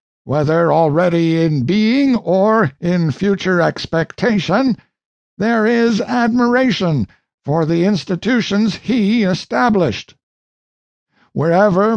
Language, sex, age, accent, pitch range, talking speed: English, male, 60-79, American, 160-215 Hz, 85 wpm